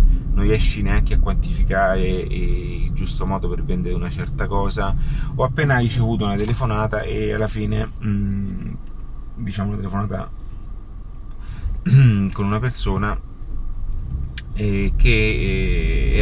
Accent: native